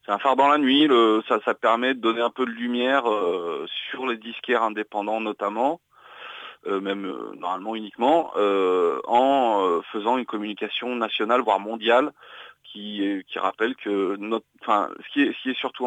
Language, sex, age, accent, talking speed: French, male, 30-49, French, 180 wpm